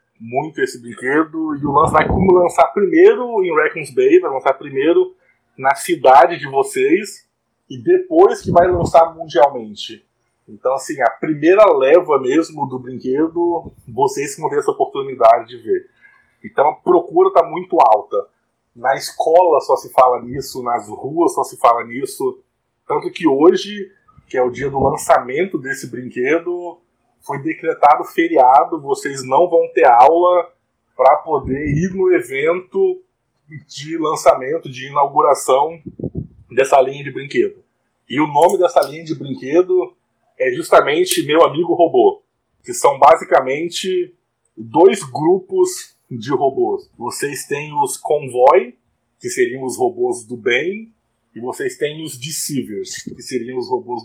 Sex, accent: male, Brazilian